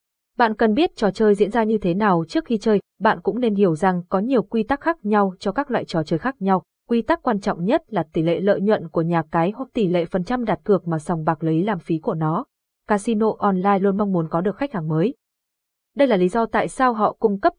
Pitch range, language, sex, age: 180-230 Hz, Vietnamese, female, 20-39